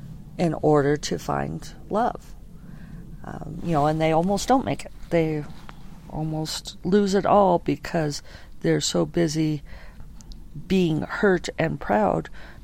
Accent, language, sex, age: American, English, female, 50-69